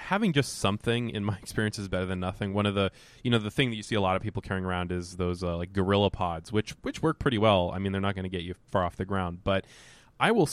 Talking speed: 295 wpm